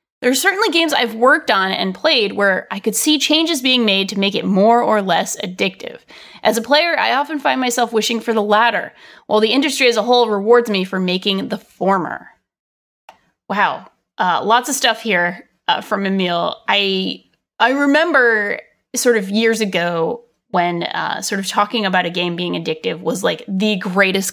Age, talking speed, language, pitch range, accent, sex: 20-39, 185 wpm, English, 195-250 Hz, American, female